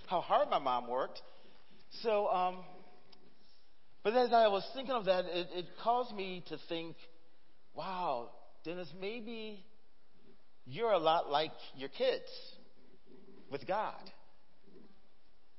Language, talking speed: English, 120 wpm